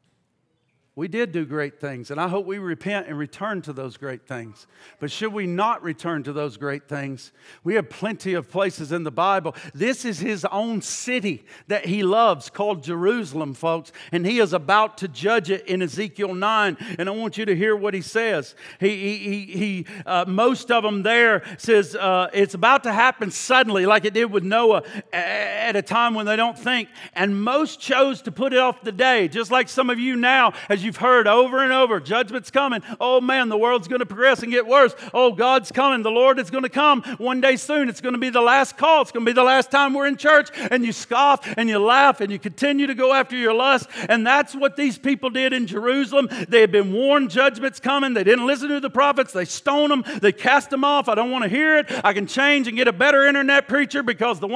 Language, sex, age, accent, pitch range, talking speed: English, male, 50-69, American, 195-265 Hz, 230 wpm